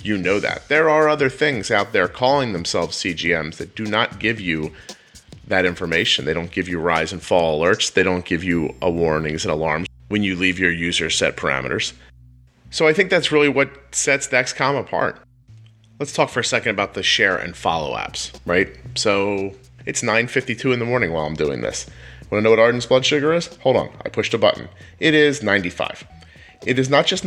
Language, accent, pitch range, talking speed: English, American, 95-135 Hz, 205 wpm